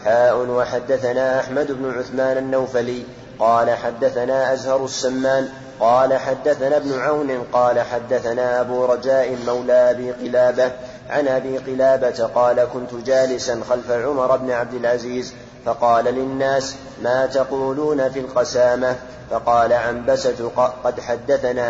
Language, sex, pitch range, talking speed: Arabic, male, 125-135 Hz, 115 wpm